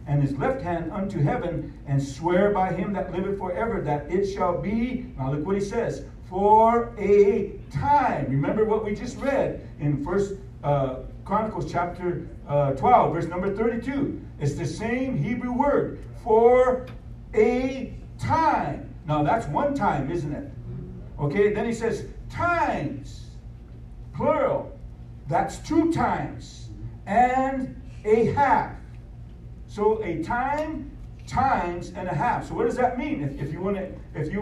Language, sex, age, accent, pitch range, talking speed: English, male, 60-79, American, 140-230 Hz, 140 wpm